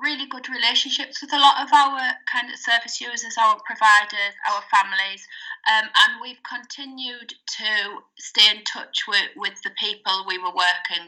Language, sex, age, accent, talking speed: English, female, 30-49, British, 170 wpm